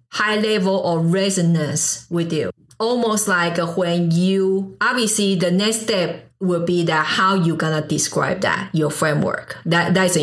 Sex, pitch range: female, 165-200 Hz